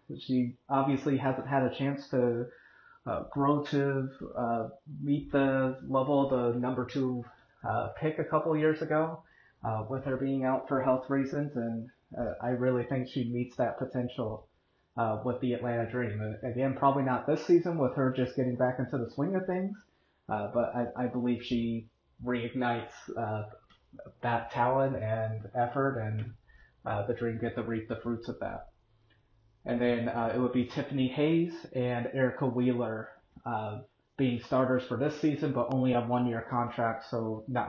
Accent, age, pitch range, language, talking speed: American, 30-49, 120-140 Hz, English, 170 wpm